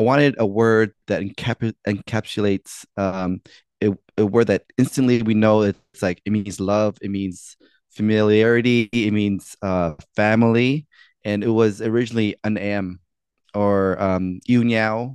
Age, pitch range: 20-39, 95-110 Hz